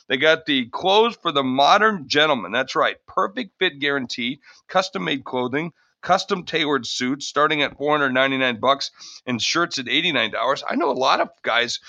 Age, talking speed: 50-69, 150 wpm